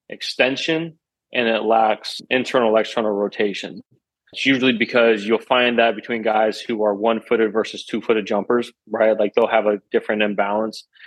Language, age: English, 20-39